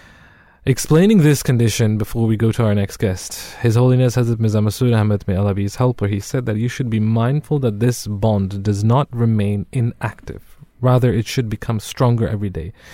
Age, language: 20-39, English